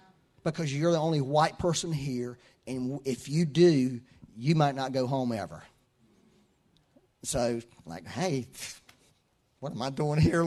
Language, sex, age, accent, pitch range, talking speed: English, male, 40-59, American, 120-170 Hz, 145 wpm